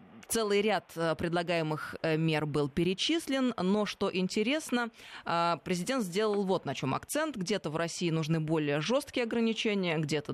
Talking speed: 135 wpm